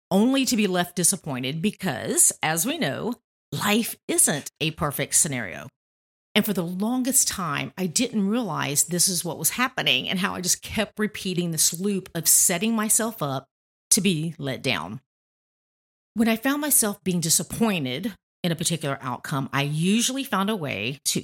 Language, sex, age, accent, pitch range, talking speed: English, female, 50-69, American, 145-205 Hz, 165 wpm